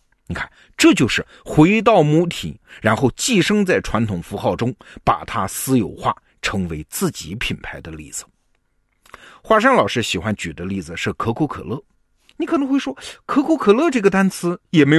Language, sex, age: Chinese, male, 50-69